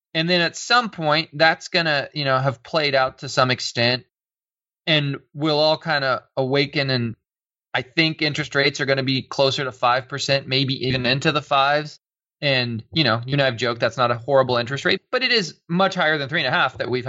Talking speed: 220 wpm